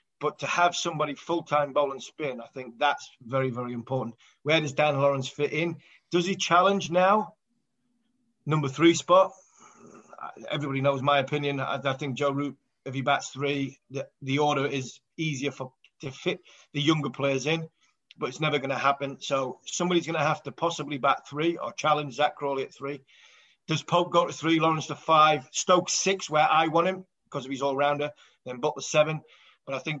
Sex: male